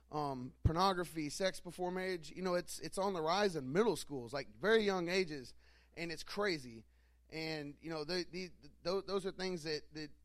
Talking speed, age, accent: 195 wpm, 30-49, American